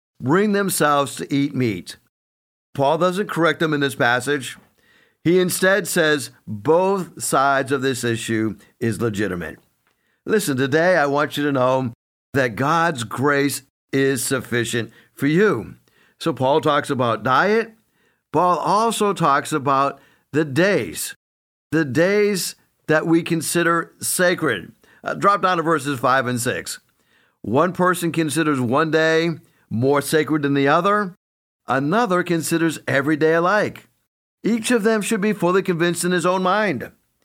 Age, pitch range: 50-69, 130-175 Hz